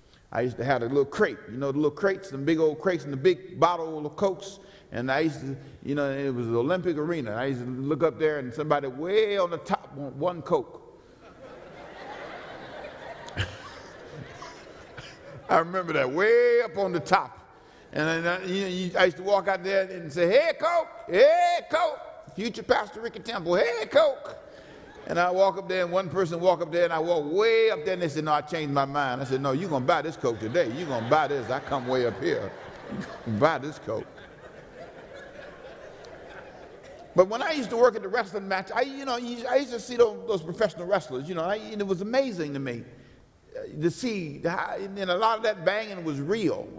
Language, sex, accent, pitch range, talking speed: English, male, American, 150-215 Hz, 210 wpm